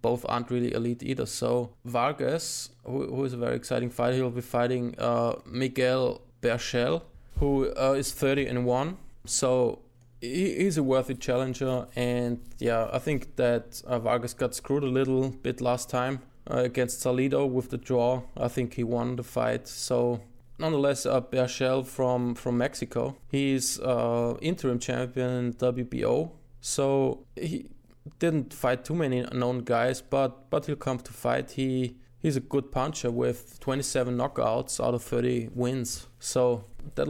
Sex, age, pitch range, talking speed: male, 20-39, 125-135 Hz, 160 wpm